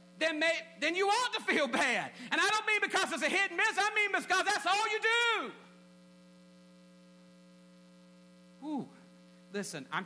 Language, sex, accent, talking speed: English, male, American, 155 wpm